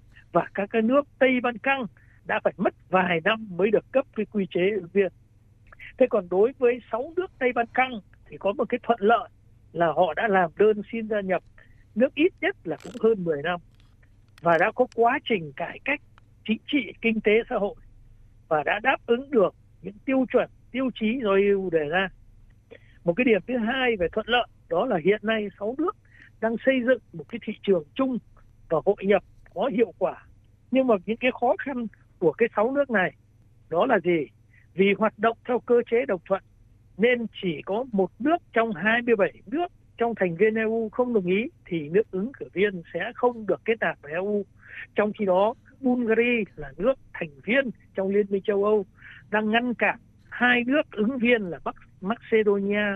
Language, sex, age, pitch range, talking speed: Vietnamese, male, 60-79, 170-235 Hz, 200 wpm